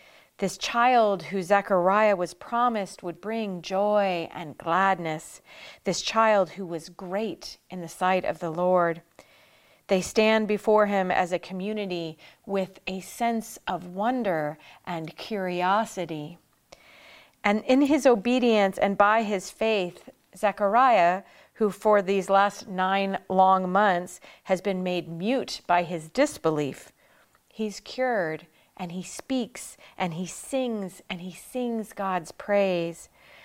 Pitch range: 180-225 Hz